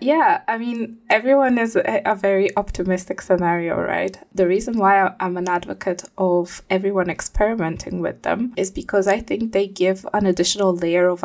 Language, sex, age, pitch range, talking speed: English, female, 20-39, 175-200 Hz, 165 wpm